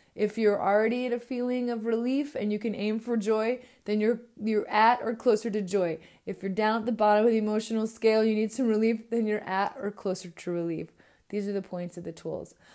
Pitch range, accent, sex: 195-240 Hz, American, female